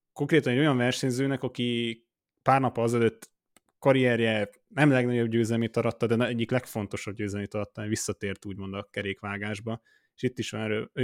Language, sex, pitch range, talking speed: Hungarian, male, 105-125 Hz, 150 wpm